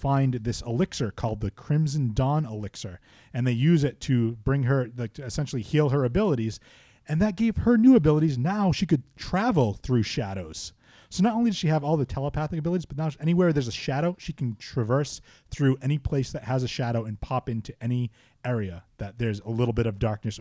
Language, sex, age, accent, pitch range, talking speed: English, male, 30-49, American, 115-150 Hz, 205 wpm